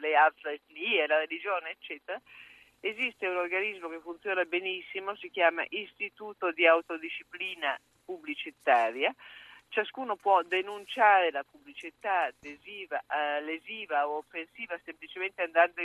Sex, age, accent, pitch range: female, 50-69, native, 170-250 Hz